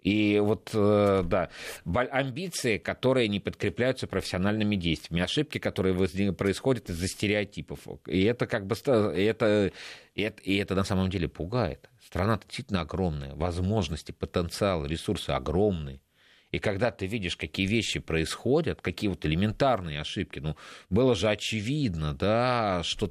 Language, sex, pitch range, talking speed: Russian, male, 90-120 Hz, 135 wpm